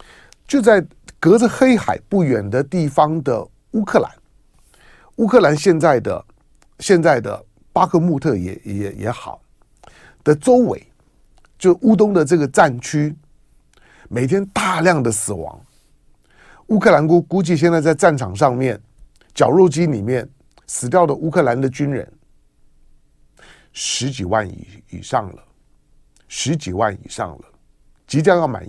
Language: Chinese